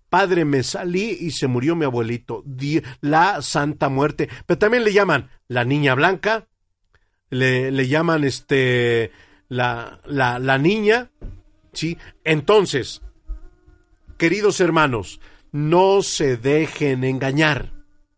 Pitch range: 130-205 Hz